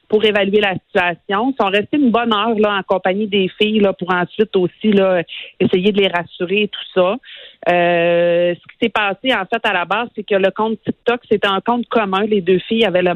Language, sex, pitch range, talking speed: French, female, 175-210 Hz, 235 wpm